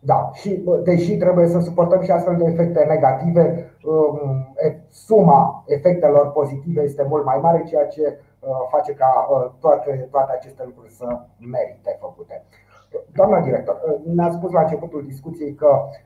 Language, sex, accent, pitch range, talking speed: Romanian, male, native, 145-175 Hz, 140 wpm